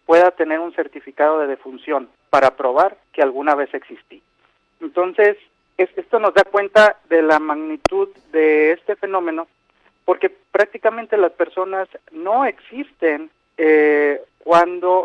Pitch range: 150-190 Hz